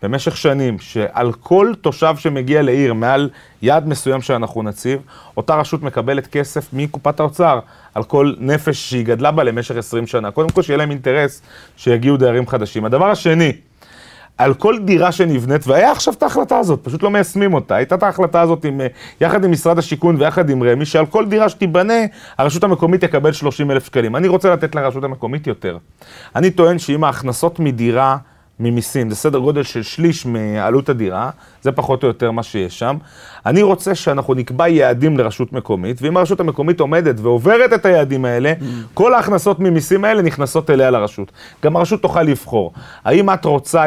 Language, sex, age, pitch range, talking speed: Hebrew, male, 30-49, 130-170 Hz, 170 wpm